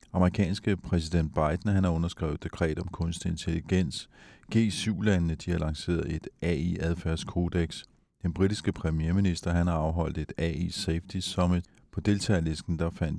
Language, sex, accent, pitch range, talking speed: Danish, male, native, 80-95 Hz, 135 wpm